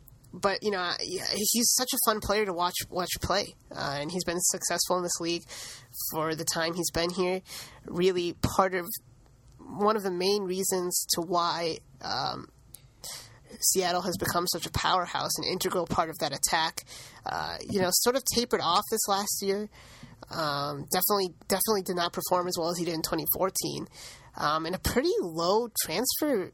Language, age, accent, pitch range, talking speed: English, 20-39, American, 155-200 Hz, 175 wpm